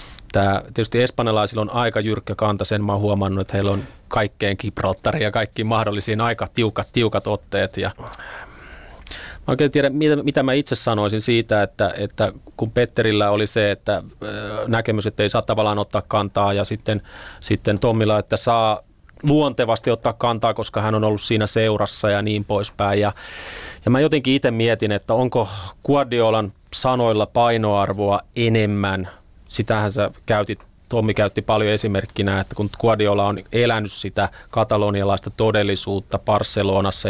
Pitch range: 100-115 Hz